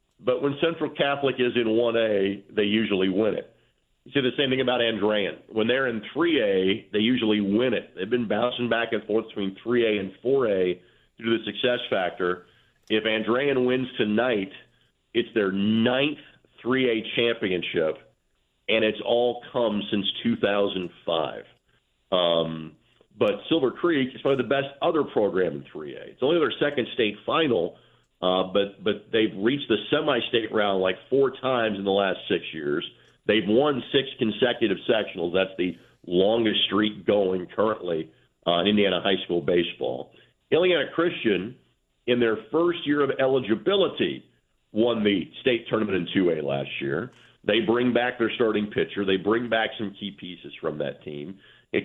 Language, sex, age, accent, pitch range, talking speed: English, male, 50-69, American, 95-120 Hz, 160 wpm